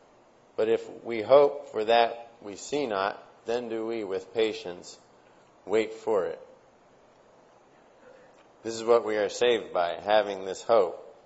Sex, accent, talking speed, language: male, American, 145 wpm, English